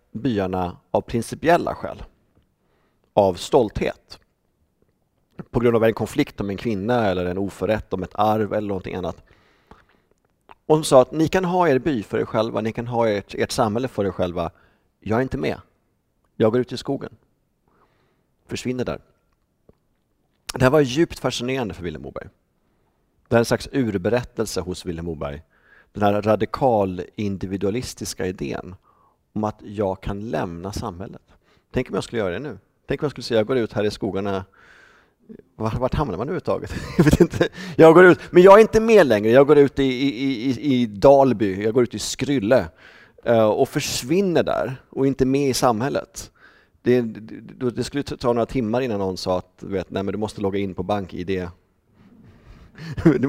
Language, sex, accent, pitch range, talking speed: Swedish, male, native, 100-135 Hz, 180 wpm